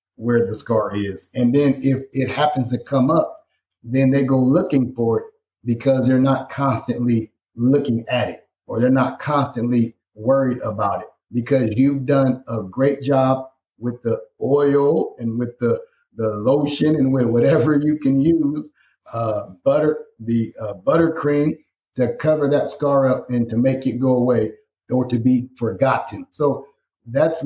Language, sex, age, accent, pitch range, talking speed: English, male, 50-69, American, 120-140 Hz, 160 wpm